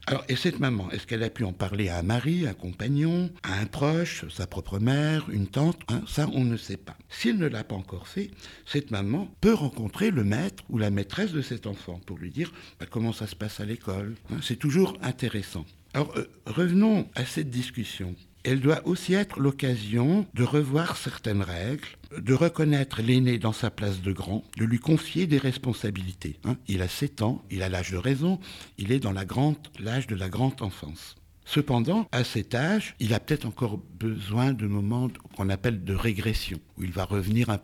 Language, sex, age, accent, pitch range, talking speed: French, male, 60-79, French, 95-140 Hz, 205 wpm